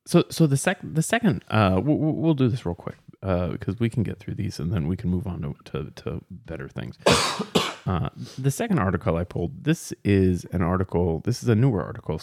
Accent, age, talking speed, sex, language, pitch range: American, 30-49, 230 wpm, male, English, 85-120 Hz